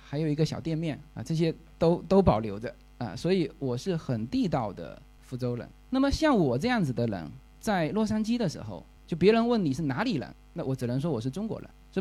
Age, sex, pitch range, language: 20-39, male, 130-210 Hz, Chinese